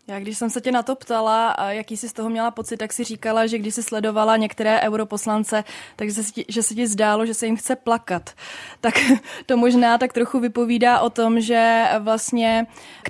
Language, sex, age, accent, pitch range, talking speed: Czech, female, 20-39, native, 205-225 Hz, 210 wpm